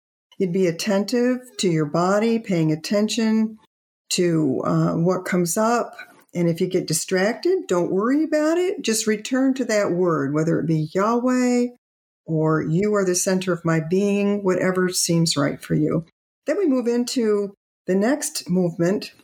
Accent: American